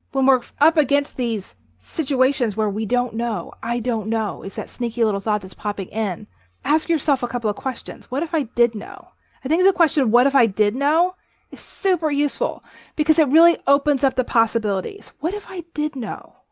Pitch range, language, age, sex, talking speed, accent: 230-295 Hz, English, 30-49, female, 205 wpm, American